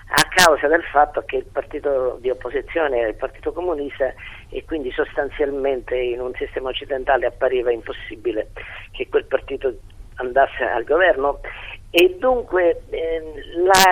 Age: 50-69